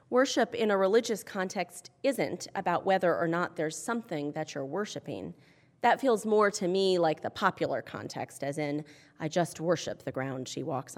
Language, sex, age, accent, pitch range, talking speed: English, female, 30-49, American, 155-225 Hz, 180 wpm